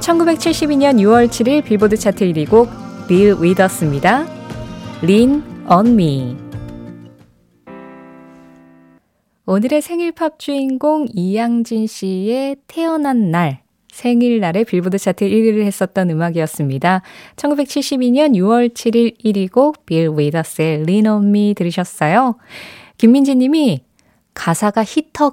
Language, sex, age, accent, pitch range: Korean, female, 20-39, native, 175-240 Hz